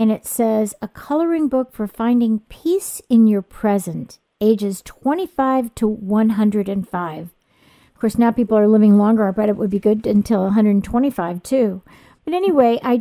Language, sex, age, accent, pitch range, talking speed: English, female, 50-69, American, 205-255 Hz, 155 wpm